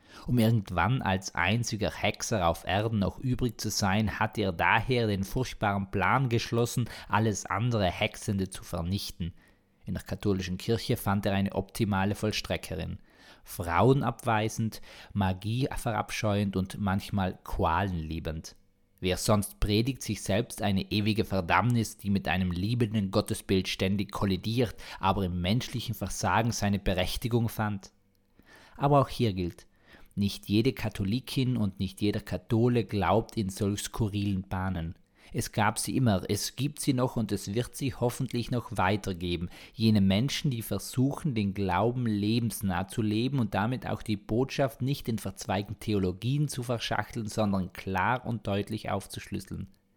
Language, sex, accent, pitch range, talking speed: German, male, German, 95-115 Hz, 140 wpm